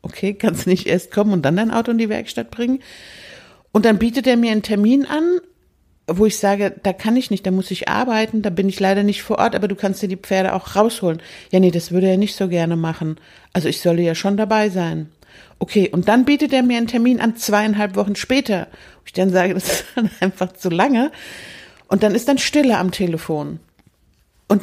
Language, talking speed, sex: German, 225 wpm, female